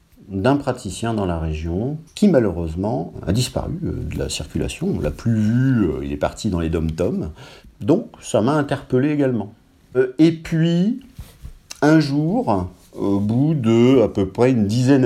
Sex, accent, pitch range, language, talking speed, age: male, French, 95-155 Hz, French, 150 wpm, 50-69